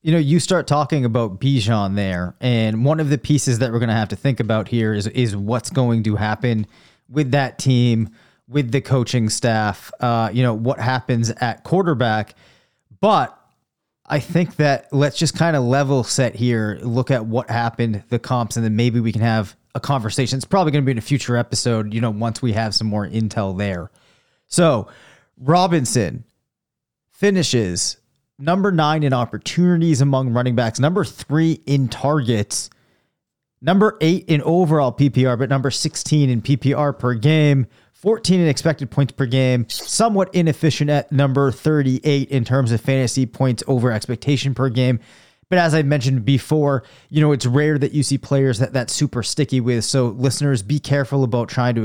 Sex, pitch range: male, 115-145 Hz